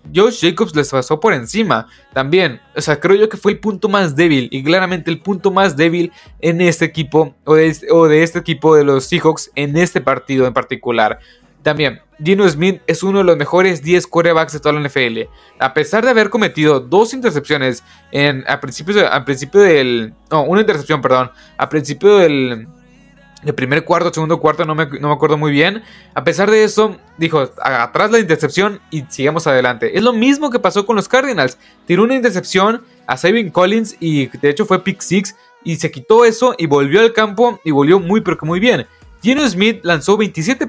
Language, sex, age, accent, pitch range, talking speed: Spanish, male, 20-39, Mexican, 145-200 Hz, 200 wpm